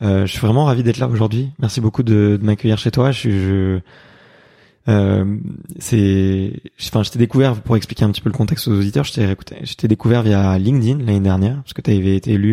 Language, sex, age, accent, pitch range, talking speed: French, male, 20-39, French, 100-125 Hz, 225 wpm